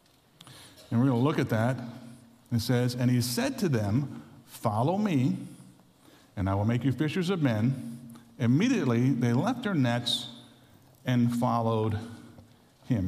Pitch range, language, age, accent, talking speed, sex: 110-140 Hz, English, 50-69, American, 145 wpm, male